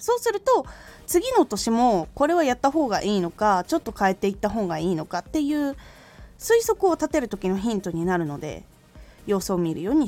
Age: 20-39